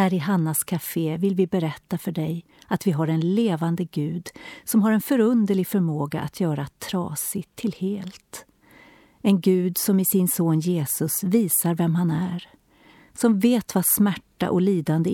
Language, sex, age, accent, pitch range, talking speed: Swedish, female, 40-59, native, 170-205 Hz, 165 wpm